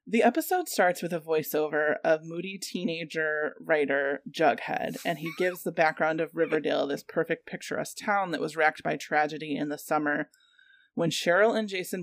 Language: English